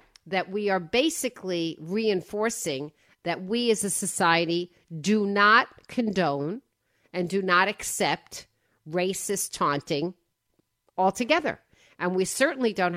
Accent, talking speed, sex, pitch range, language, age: American, 110 wpm, female, 165-195 Hz, English, 50-69